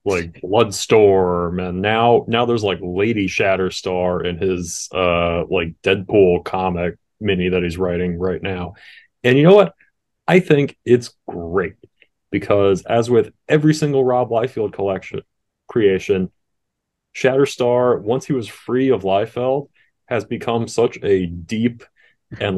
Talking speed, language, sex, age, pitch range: 135 wpm, English, male, 30-49, 95-120 Hz